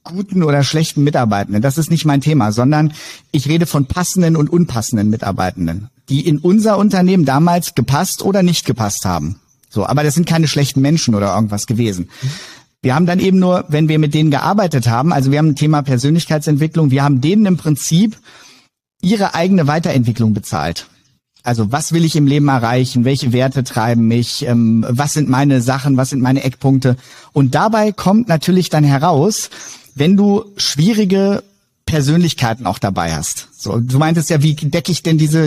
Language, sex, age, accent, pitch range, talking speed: German, male, 50-69, German, 130-175 Hz, 175 wpm